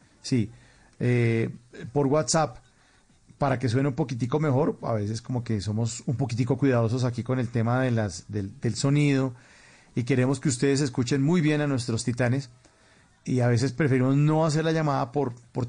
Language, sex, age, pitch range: English, male, 40-59, 120-145 Hz